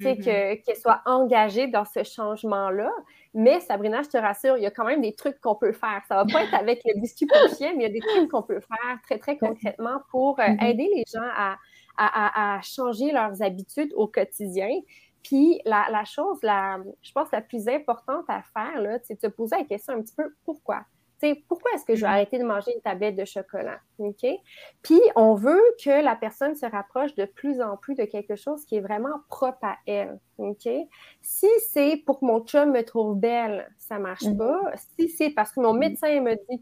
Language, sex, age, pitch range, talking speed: French, female, 30-49, 210-280 Hz, 225 wpm